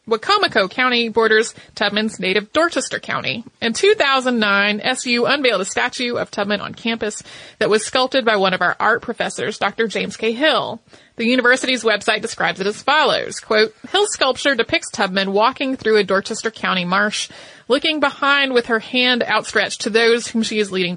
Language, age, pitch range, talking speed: English, 30-49, 210-255 Hz, 170 wpm